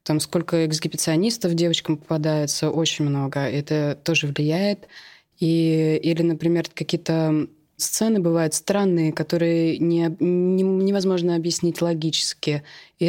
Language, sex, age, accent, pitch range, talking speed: Russian, female, 20-39, native, 160-185 Hz, 110 wpm